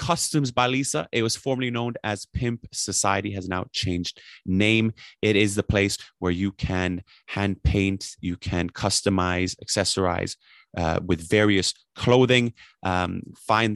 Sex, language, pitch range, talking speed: male, English, 90-110 Hz, 145 wpm